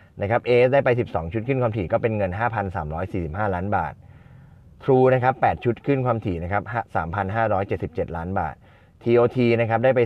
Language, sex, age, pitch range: Thai, male, 20-39, 90-115 Hz